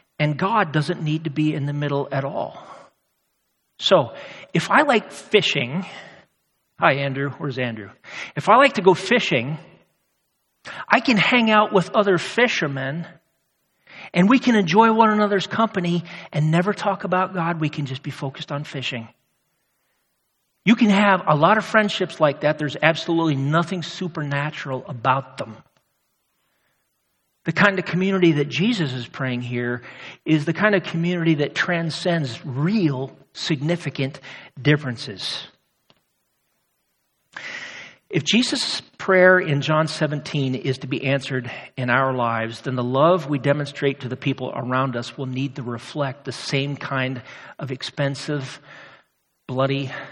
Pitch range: 135-180 Hz